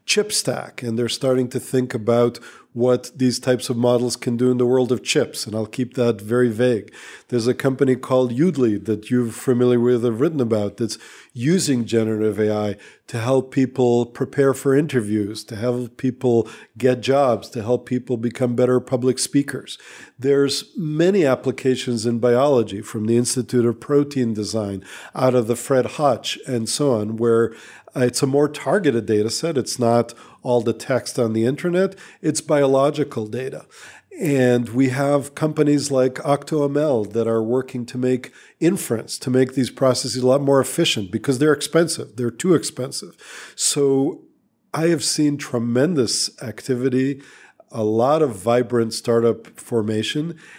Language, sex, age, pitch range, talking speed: English, male, 50-69, 120-140 Hz, 160 wpm